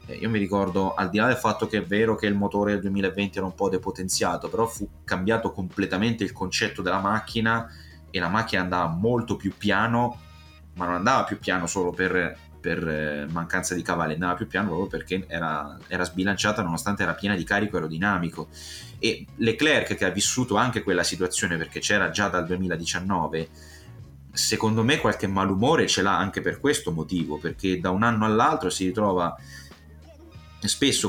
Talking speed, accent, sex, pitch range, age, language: 175 wpm, native, male, 85-105 Hz, 30-49, Italian